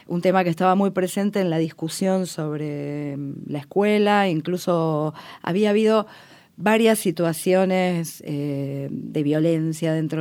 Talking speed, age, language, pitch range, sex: 125 wpm, 40-59, Spanish, 155-185 Hz, female